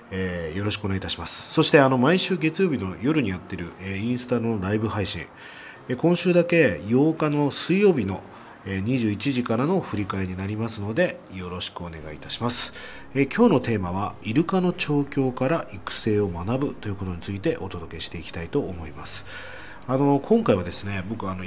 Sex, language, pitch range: male, Japanese, 95-135 Hz